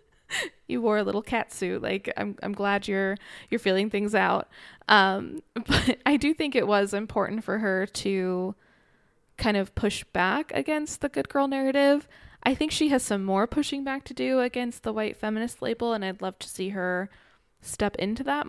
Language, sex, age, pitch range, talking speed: English, female, 20-39, 195-245 Hz, 190 wpm